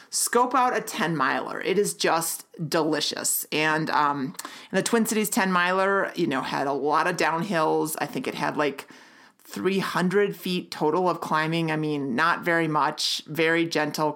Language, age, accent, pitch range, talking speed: English, 30-49, American, 165-220 Hz, 160 wpm